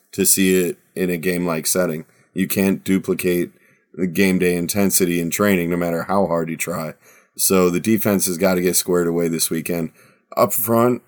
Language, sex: English, male